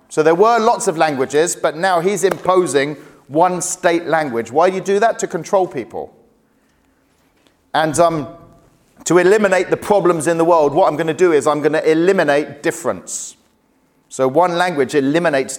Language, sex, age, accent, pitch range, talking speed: English, male, 40-59, British, 120-170 Hz, 175 wpm